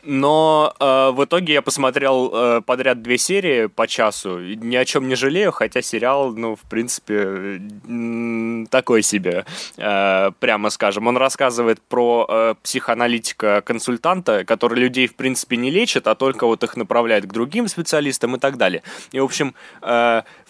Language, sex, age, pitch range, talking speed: Russian, male, 20-39, 110-135 Hz, 160 wpm